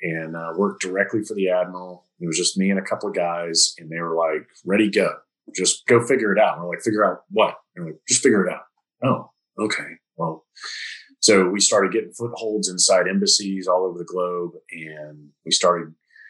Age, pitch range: 30-49, 85-100 Hz